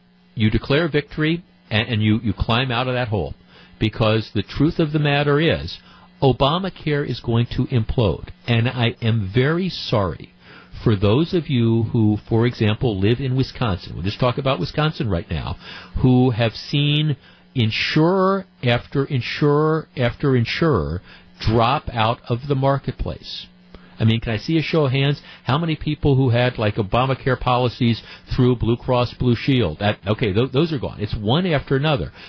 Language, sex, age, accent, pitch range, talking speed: English, male, 50-69, American, 110-140 Hz, 165 wpm